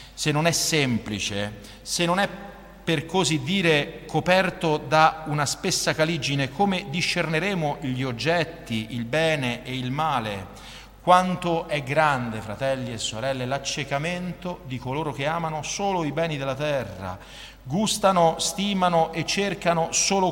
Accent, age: native, 40-59